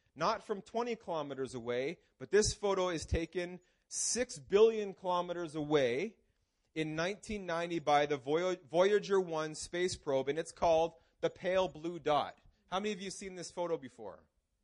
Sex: male